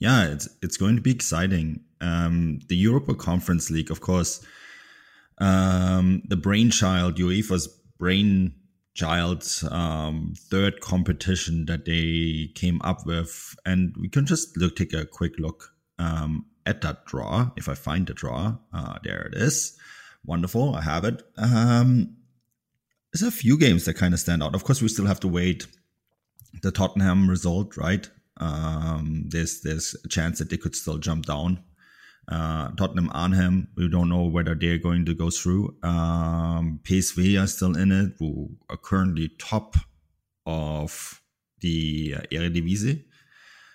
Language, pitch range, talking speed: English, 80-95 Hz, 150 wpm